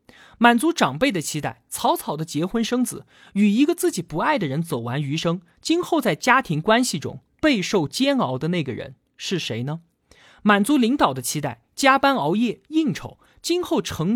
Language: Chinese